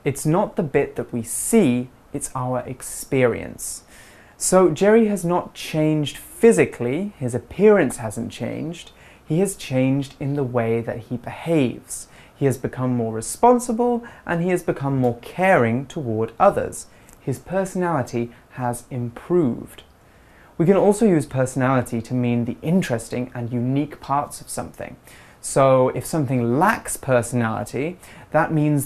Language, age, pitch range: Chinese, 20-39, 120-155 Hz